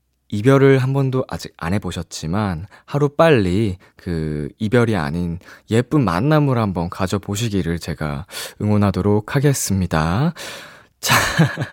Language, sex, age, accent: Korean, male, 20-39, native